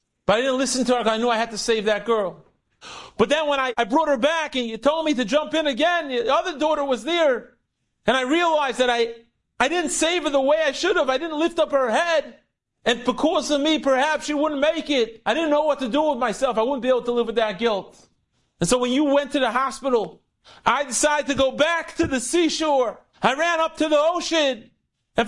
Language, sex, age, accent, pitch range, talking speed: English, male, 40-59, American, 235-315 Hz, 250 wpm